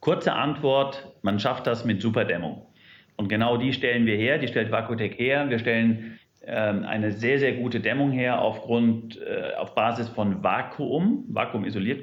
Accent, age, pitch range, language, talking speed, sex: German, 40-59, 110-135 Hz, German, 170 wpm, male